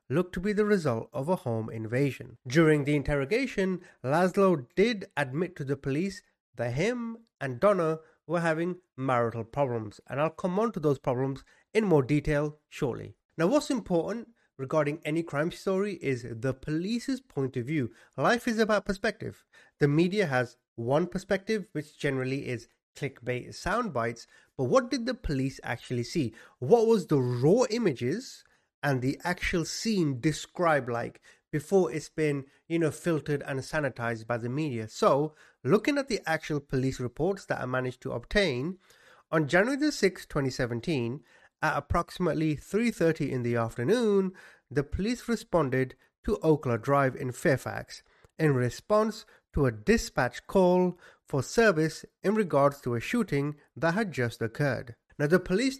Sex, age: male, 30-49